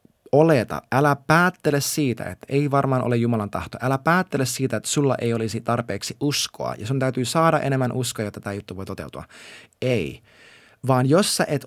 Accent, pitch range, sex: native, 115-155 Hz, male